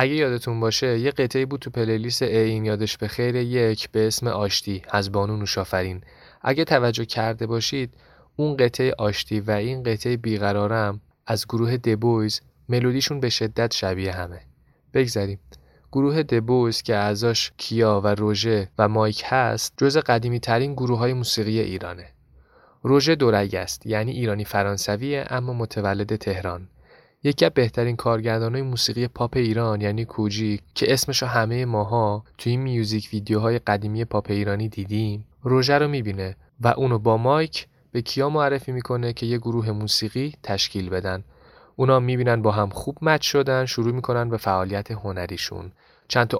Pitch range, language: 105-125 Hz, Persian